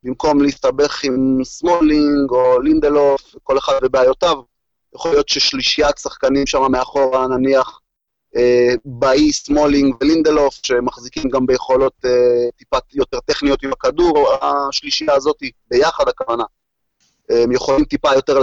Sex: male